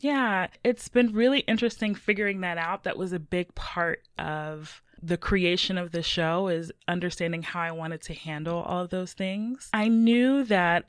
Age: 20-39